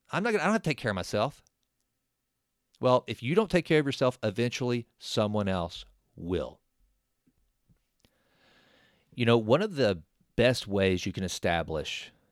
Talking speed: 145 wpm